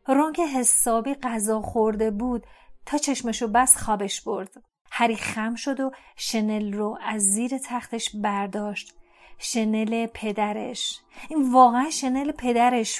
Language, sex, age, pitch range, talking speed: Persian, female, 40-59, 215-255 Hz, 120 wpm